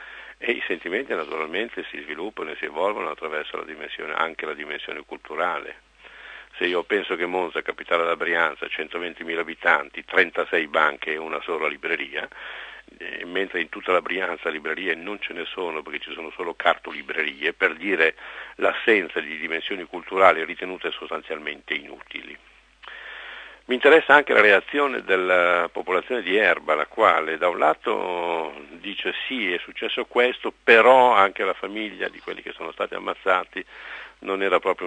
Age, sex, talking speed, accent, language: 50-69, male, 150 wpm, native, Italian